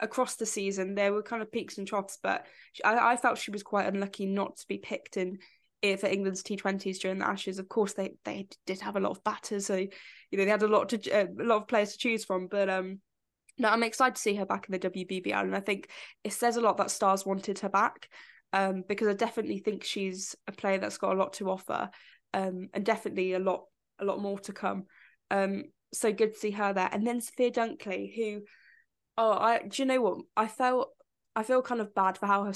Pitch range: 195-230 Hz